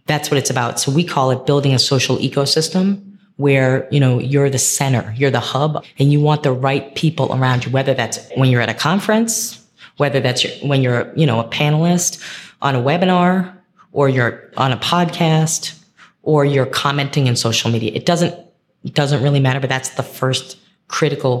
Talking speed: 195 wpm